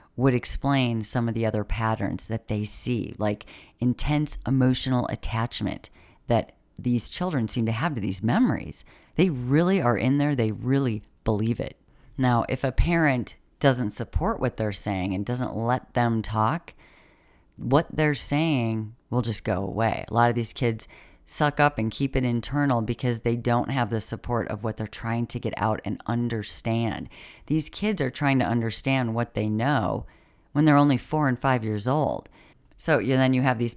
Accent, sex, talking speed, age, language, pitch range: American, female, 180 wpm, 30-49, English, 110-140 Hz